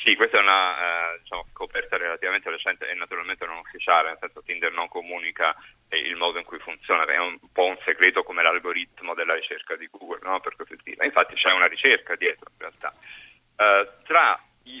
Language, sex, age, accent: Italian, male, 30-49, native